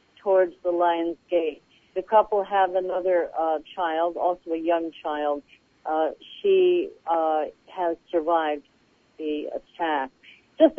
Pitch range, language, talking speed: 170-225 Hz, English, 120 wpm